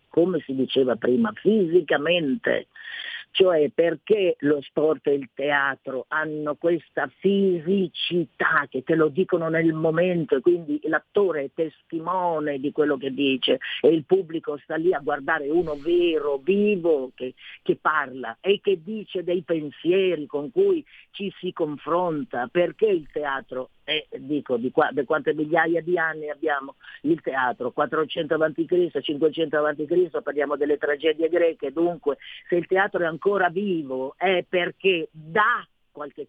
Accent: native